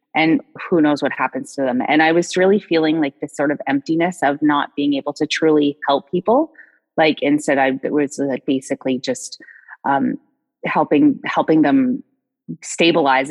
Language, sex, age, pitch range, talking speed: English, female, 30-49, 145-195 Hz, 170 wpm